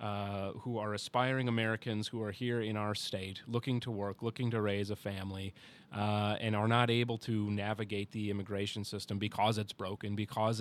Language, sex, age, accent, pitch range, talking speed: English, male, 30-49, American, 100-115 Hz, 185 wpm